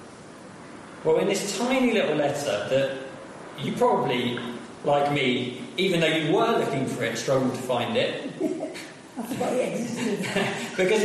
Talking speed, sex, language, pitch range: 125 wpm, male, English, 125-160 Hz